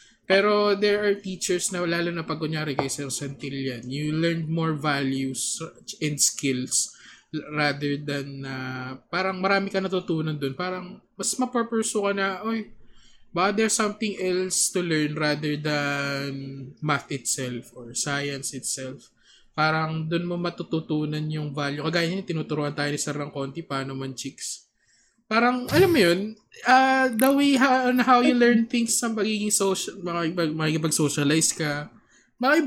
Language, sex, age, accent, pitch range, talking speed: Filipino, male, 20-39, native, 140-205 Hz, 140 wpm